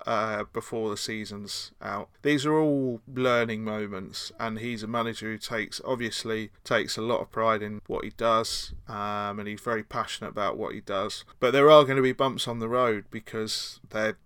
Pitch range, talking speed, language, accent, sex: 105-120 Hz, 200 wpm, English, British, male